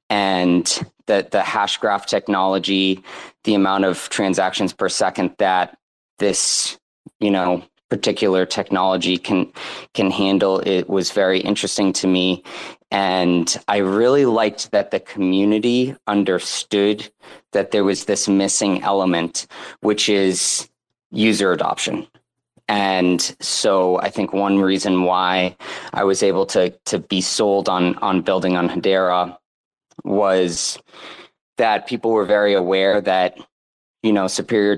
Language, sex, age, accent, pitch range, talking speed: English, male, 30-49, American, 90-100 Hz, 130 wpm